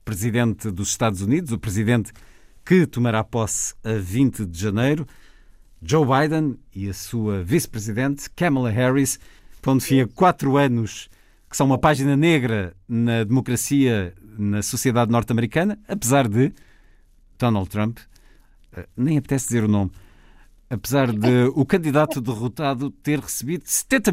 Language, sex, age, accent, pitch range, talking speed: Portuguese, male, 50-69, Portuguese, 100-135 Hz, 125 wpm